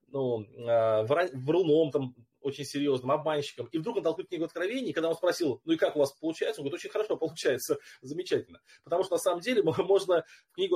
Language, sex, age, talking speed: Russian, male, 20-39, 200 wpm